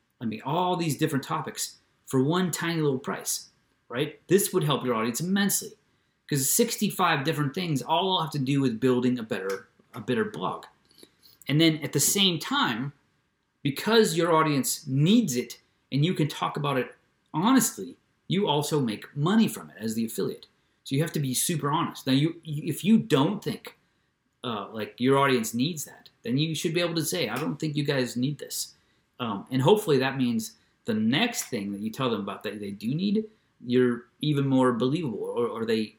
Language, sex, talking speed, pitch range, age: English, male, 195 wpm, 125-165 Hz, 30-49